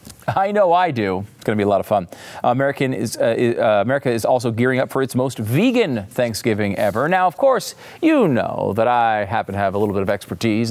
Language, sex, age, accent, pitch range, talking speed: English, male, 40-59, American, 100-135 Hz, 235 wpm